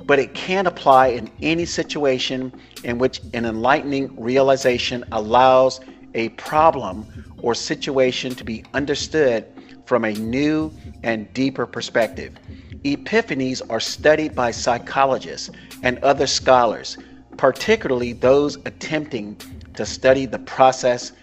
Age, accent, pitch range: 40-59, American, 115-145 Hz